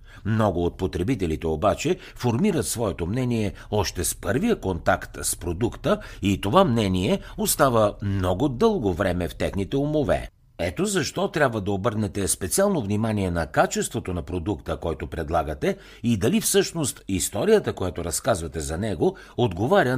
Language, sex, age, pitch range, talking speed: Bulgarian, male, 60-79, 90-125 Hz, 135 wpm